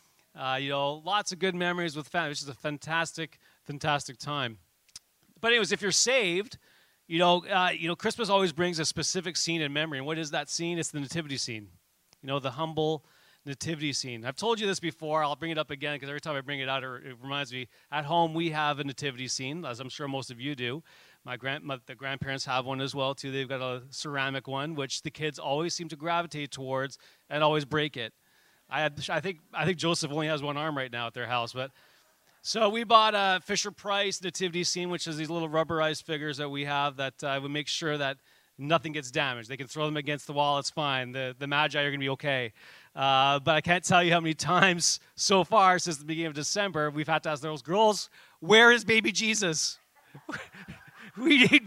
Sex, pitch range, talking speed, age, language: male, 140-175 Hz, 230 wpm, 30-49, English